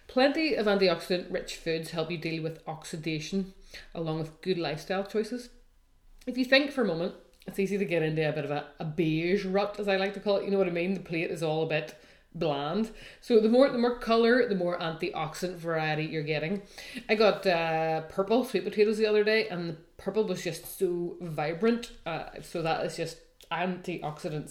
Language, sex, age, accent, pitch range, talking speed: English, female, 30-49, Irish, 160-205 Hz, 210 wpm